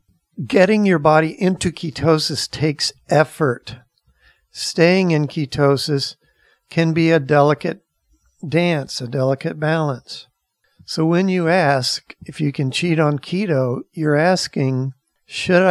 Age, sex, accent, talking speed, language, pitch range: 60-79, male, American, 120 wpm, English, 135-170 Hz